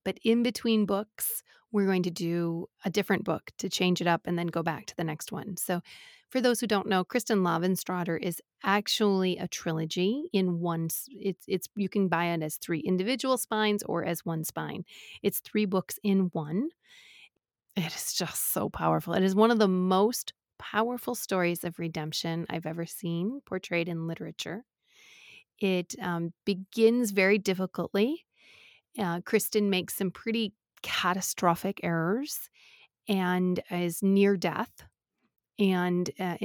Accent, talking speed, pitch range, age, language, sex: American, 155 wpm, 175-210 Hz, 30-49, English, female